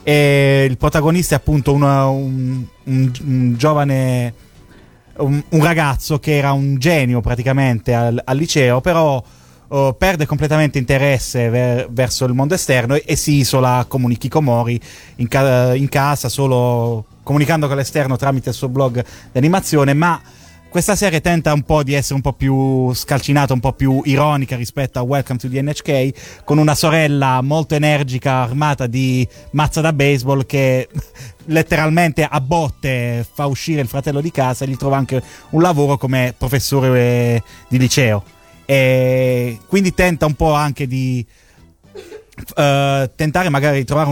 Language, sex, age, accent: Italian, male, 20-39, native